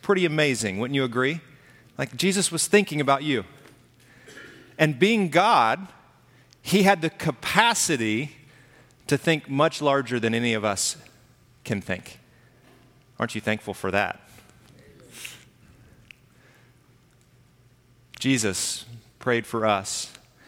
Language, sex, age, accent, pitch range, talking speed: English, male, 40-59, American, 115-145 Hz, 110 wpm